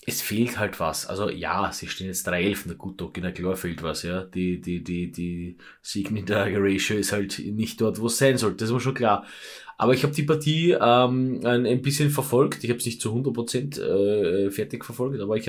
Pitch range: 105-135 Hz